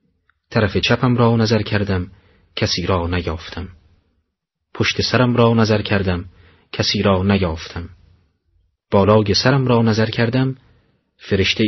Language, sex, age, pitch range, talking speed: Persian, male, 30-49, 90-115 Hz, 115 wpm